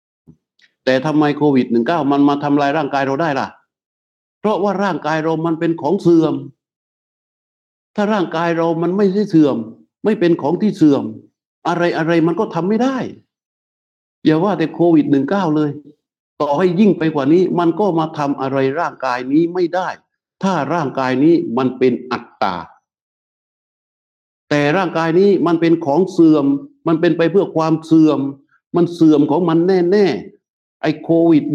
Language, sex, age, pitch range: Thai, male, 60-79, 140-185 Hz